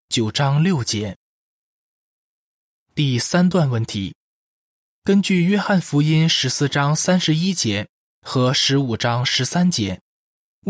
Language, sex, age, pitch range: Chinese, male, 20-39, 120-160 Hz